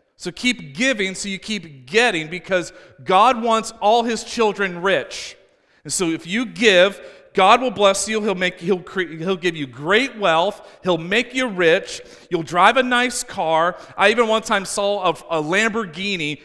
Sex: male